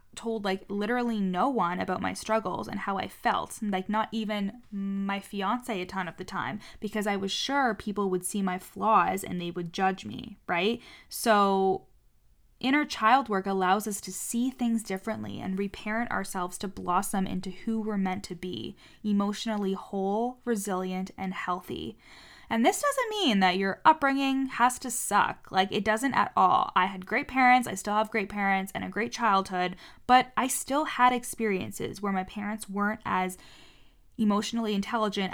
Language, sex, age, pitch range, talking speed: English, female, 10-29, 190-230 Hz, 175 wpm